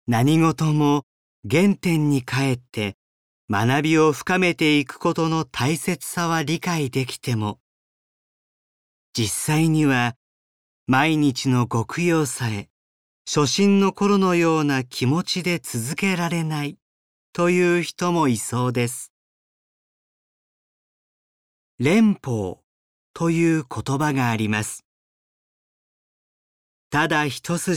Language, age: Japanese, 40-59